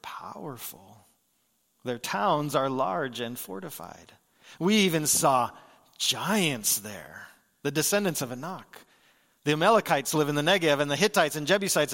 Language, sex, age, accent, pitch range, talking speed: English, male, 40-59, American, 155-200 Hz, 135 wpm